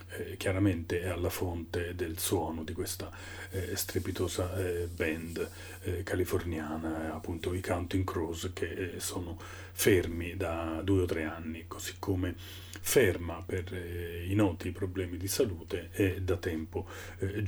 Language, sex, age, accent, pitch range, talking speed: Italian, male, 40-59, native, 90-95 Hz, 145 wpm